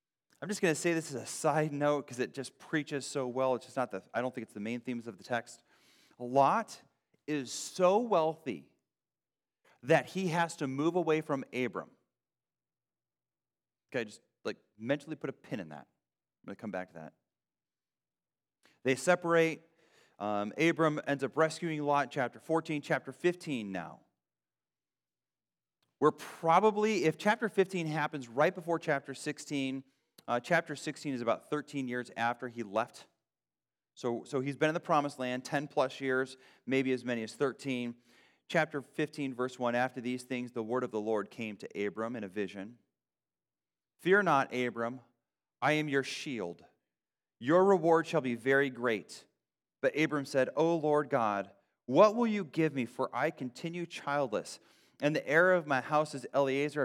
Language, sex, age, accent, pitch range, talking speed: English, male, 40-59, American, 125-155 Hz, 170 wpm